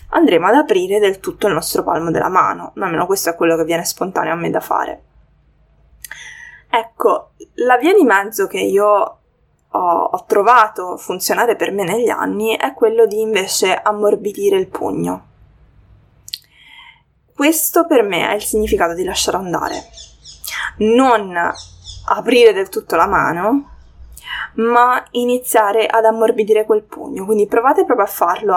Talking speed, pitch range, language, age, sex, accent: 145 wpm, 200-325 Hz, Italian, 20-39, female, native